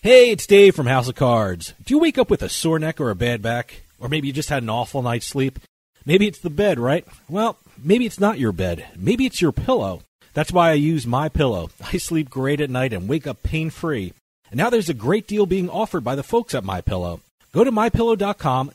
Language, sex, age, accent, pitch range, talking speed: English, male, 40-59, American, 130-200 Hz, 235 wpm